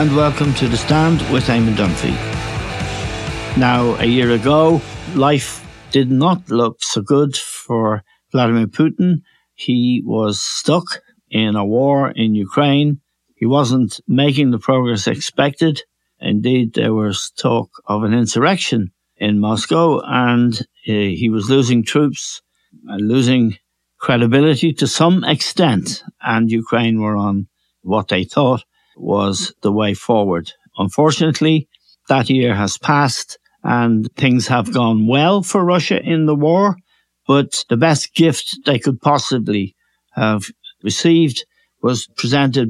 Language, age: English, 60-79